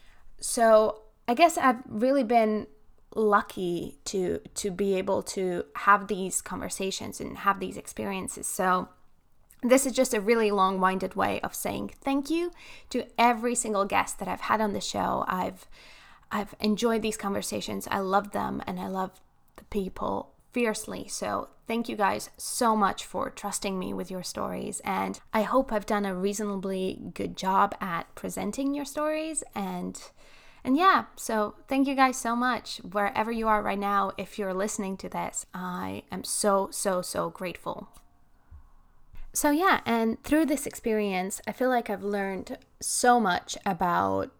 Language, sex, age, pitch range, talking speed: English, female, 10-29, 190-240 Hz, 160 wpm